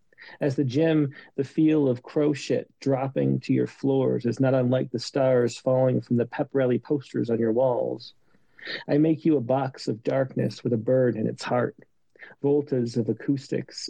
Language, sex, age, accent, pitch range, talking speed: English, male, 40-59, American, 125-150 Hz, 180 wpm